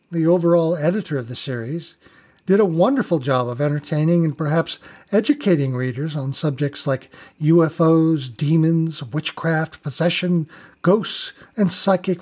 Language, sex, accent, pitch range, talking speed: English, male, American, 145-195 Hz, 130 wpm